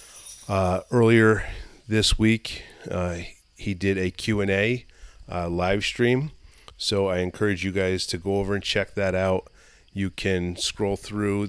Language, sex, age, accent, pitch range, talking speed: English, male, 30-49, American, 95-110 Hz, 155 wpm